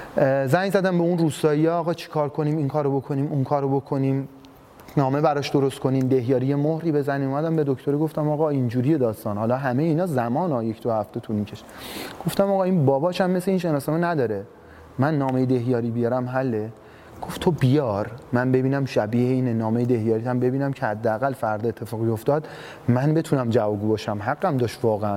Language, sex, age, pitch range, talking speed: Persian, male, 30-49, 115-150 Hz, 185 wpm